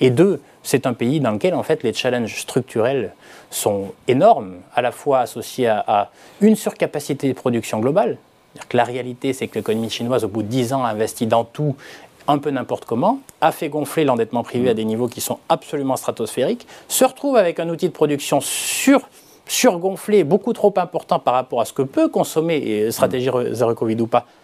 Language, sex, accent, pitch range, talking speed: French, male, French, 120-170 Hz, 200 wpm